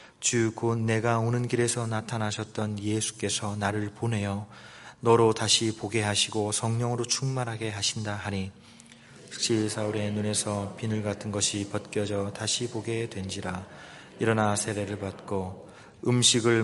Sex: male